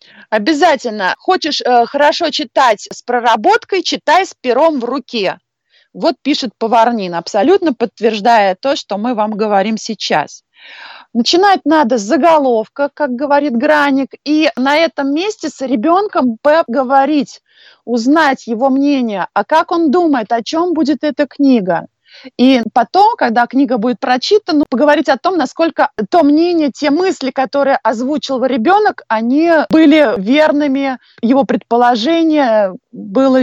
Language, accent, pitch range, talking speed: Russian, native, 235-305 Hz, 130 wpm